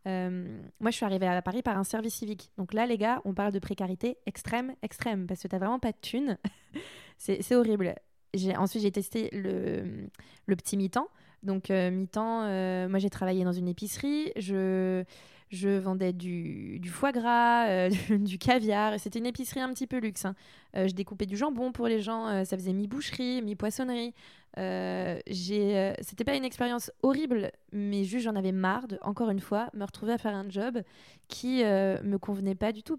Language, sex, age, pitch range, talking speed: French, female, 20-39, 195-245 Hz, 205 wpm